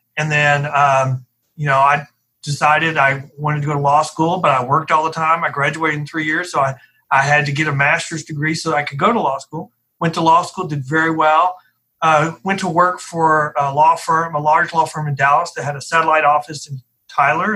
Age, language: 40-59, English